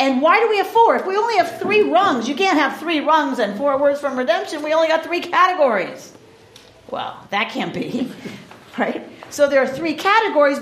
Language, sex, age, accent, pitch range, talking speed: English, female, 50-69, American, 255-340 Hz, 210 wpm